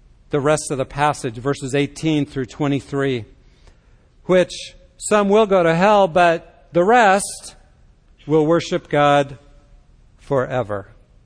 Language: English